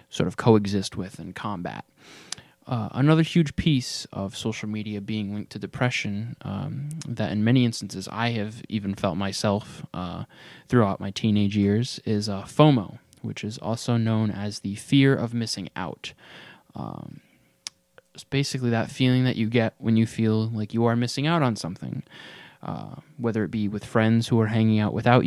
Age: 20-39